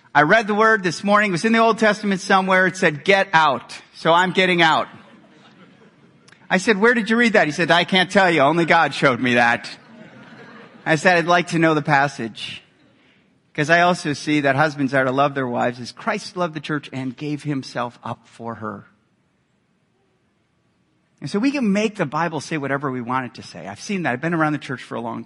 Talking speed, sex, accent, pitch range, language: 225 wpm, male, American, 150-220 Hz, English